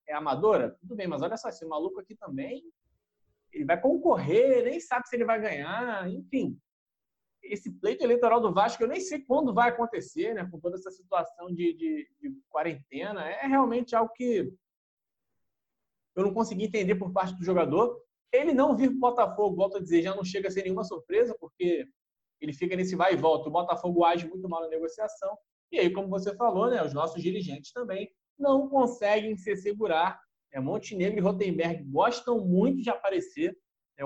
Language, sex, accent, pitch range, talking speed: Portuguese, male, Brazilian, 180-245 Hz, 185 wpm